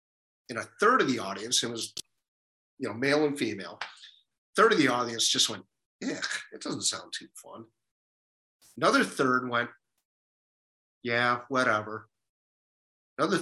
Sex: male